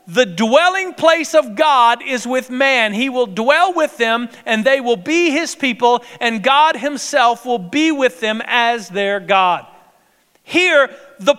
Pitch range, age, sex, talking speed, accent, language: 240-315 Hz, 40-59, male, 165 wpm, American, English